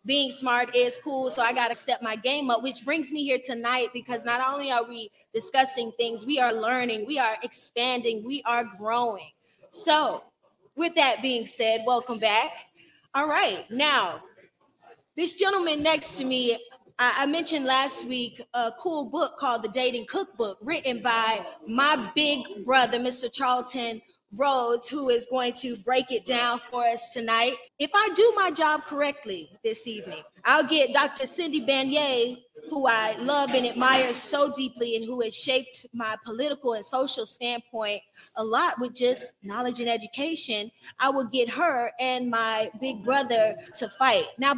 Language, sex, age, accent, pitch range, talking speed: English, female, 20-39, American, 235-285 Hz, 165 wpm